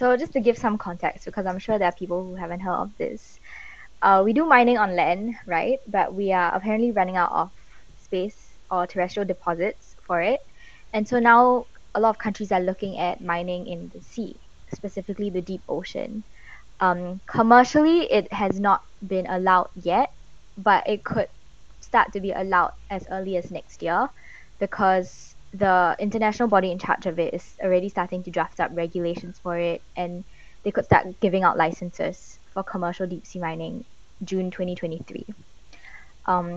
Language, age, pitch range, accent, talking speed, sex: English, 10-29, 180-215 Hz, Malaysian, 175 wpm, female